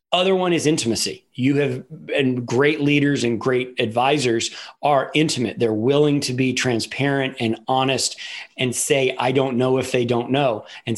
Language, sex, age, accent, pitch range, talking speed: English, male, 40-59, American, 115-140 Hz, 170 wpm